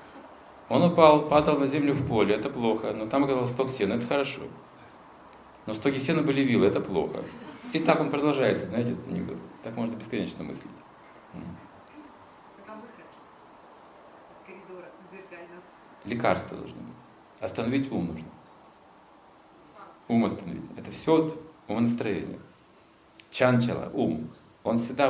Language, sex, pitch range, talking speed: Russian, male, 105-140 Hz, 120 wpm